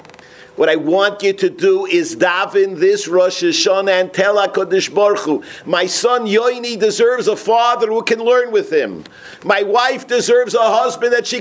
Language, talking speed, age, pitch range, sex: English, 180 wpm, 50-69, 170-255 Hz, male